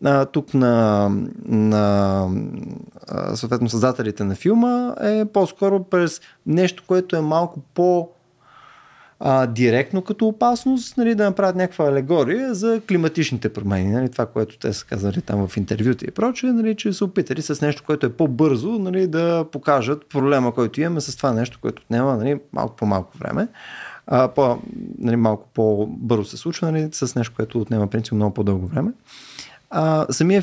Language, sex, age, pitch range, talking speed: Bulgarian, male, 30-49, 115-170 Hz, 155 wpm